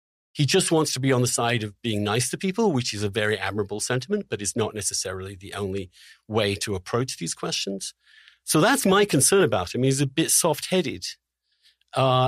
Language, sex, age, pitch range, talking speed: English, male, 50-69, 115-155 Hz, 205 wpm